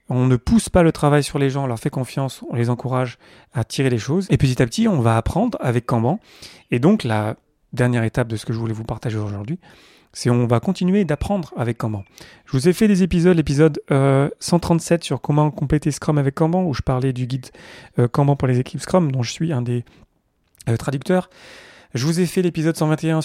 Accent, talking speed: French, 225 wpm